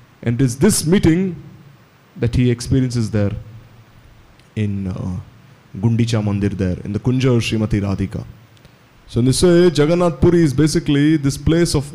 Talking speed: 145 wpm